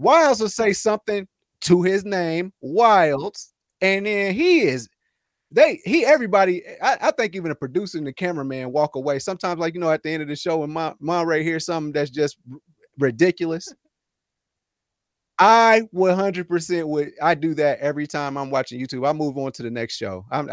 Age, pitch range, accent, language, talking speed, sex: 30-49, 150-200 Hz, American, English, 190 wpm, male